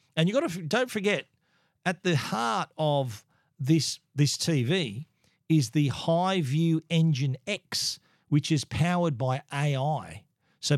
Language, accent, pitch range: English, Australian, 125-155 Hz